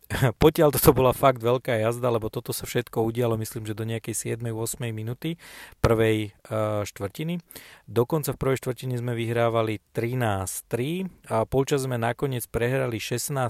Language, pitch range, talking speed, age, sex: Slovak, 110-130 Hz, 140 wpm, 40-59, male